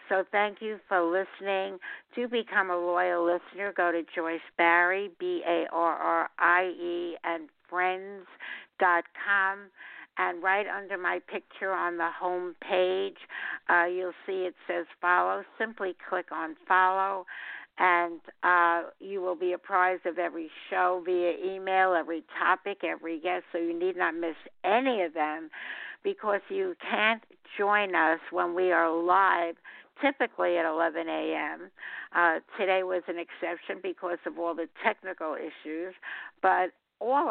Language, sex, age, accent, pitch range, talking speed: English, female, 60-79, American, 165-190 Hz, 145 wpm